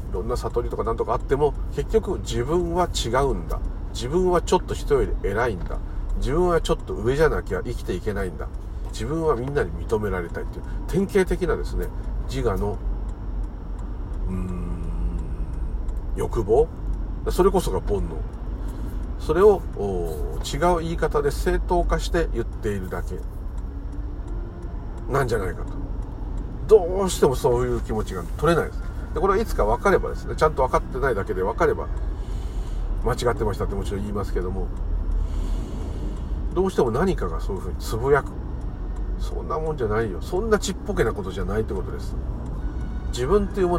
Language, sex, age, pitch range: Japanese, male, 50-69, 90-125 Hz